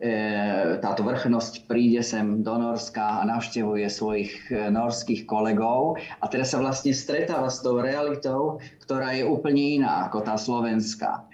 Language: Slovak